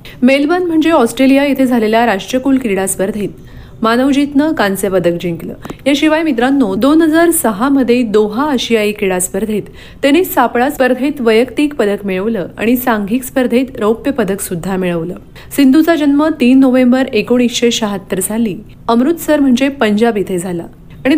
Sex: female